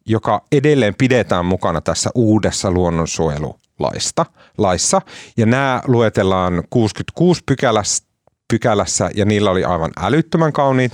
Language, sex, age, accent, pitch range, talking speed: Finnish, male, 30-49, native, 90-125 Hz, 105 wpm